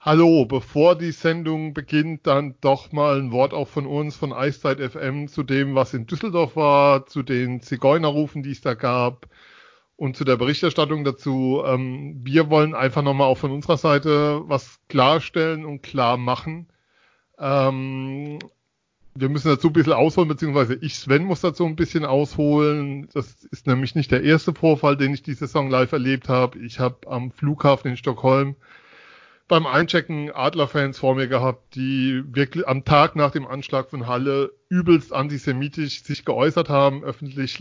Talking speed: 165 wpm